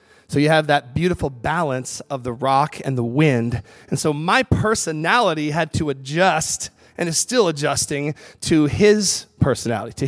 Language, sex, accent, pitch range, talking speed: English, male, American, 130-170 Hz, 160 wpm